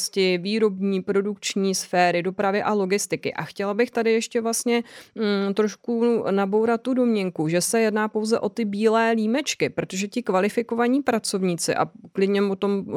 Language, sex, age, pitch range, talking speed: Czech, female, 30-49, 185-215 Hz, 155 wpm